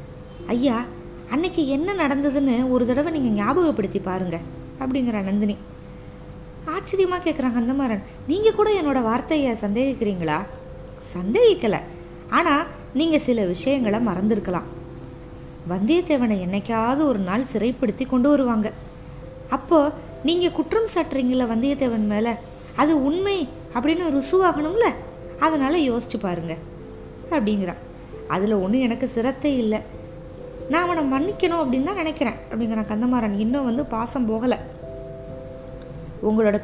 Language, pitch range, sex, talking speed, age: Tamil, 195-280 Hz, female, 110 wpm, 20-39